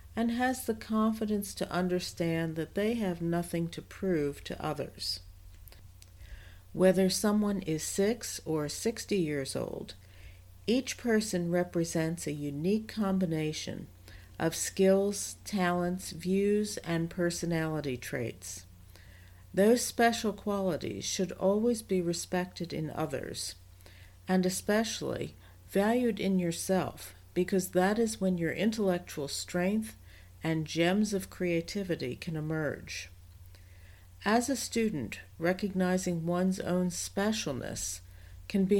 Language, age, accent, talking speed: English, 60-79, American, 110 wpm